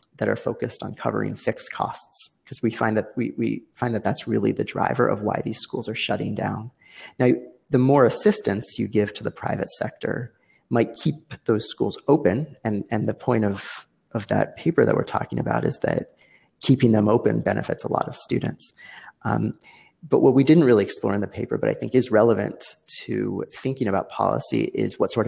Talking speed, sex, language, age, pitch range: 195 wpm, male, English, 30-49, 105-130 Hz